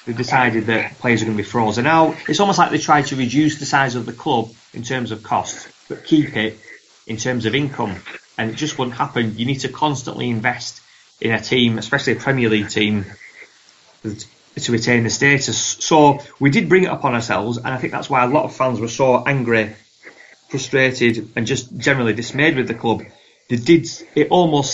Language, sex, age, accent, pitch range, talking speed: English, male, 30-49, British, 115-140 Hz, 205 wpm